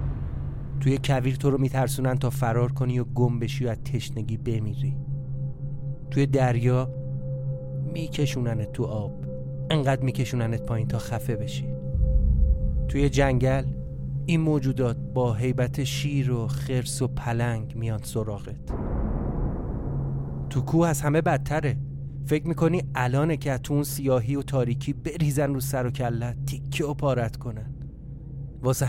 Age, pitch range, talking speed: 30-49, 120-140 Hz, 130 wpm